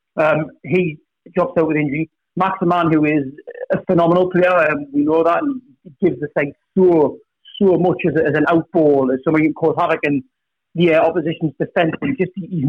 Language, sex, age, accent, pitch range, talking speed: English, male, 30-49, British, 160-195 Hz, 195 wpm